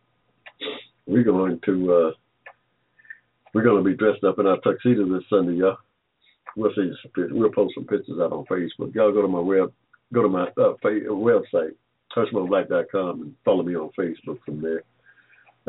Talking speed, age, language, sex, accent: 250 wpm, 60-79, English, male, American